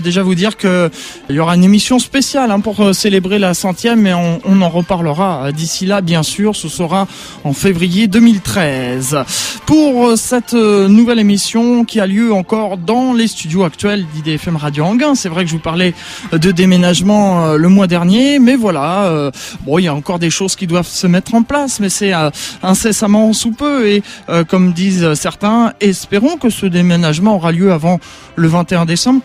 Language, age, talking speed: French, 20-39, 175 wpm